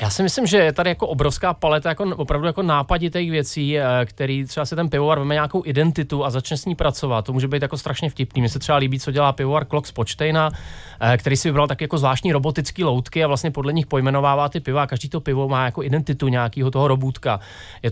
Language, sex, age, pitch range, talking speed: Czech, male, 30-49, 120-145 Hz, 220 wpm